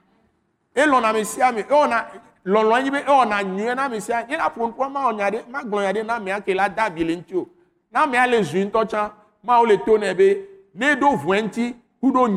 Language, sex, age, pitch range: French, male, 60-79, 190-240 Hz